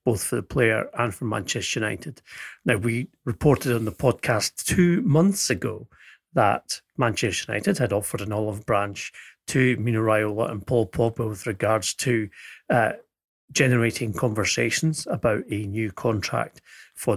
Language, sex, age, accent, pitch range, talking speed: English, male, 40-59, British, 110-130 Hz, 145 wpm